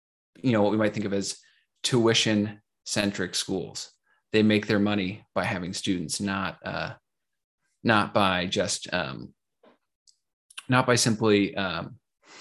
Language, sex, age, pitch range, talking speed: English, male, 20-39, 100-120 Hz, 135 wpm